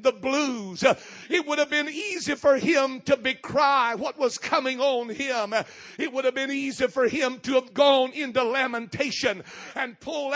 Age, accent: 50-69, American